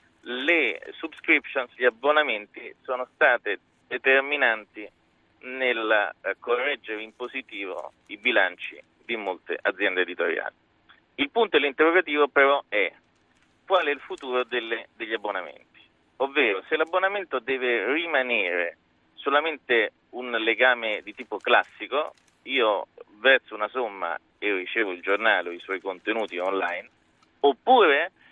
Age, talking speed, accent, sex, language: 30-49, 115 wpm, native, male, Italian